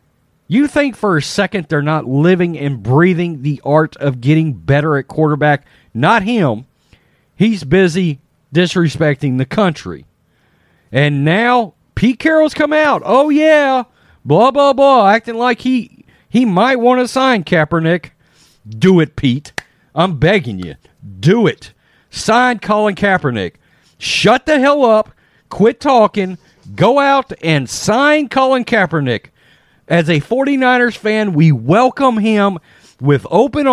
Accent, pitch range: American, 140-230 Hz